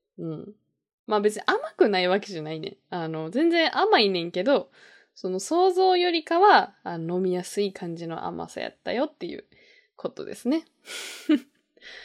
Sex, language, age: female, Japanese, 20-39